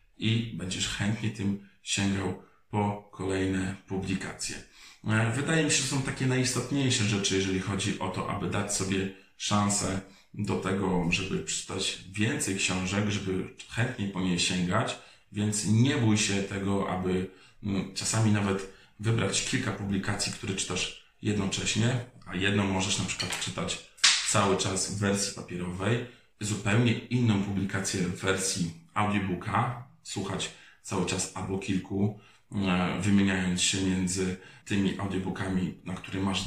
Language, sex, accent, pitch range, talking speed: Polish, male, native, 95-110 Hz, 130 wpm